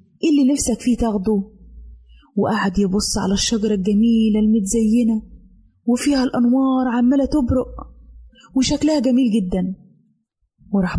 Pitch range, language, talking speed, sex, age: 205-270 Hz, Arabic, 100 wpm, female, 20-39